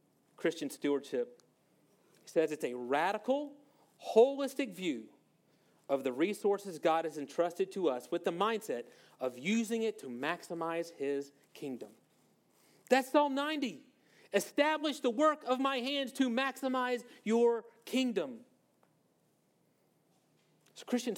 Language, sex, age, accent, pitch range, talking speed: English, male, 40-59, American, 175-255 Hz, 115 wpm